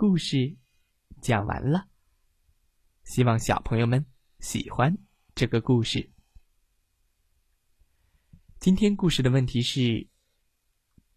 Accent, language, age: native, Chinese, 20-39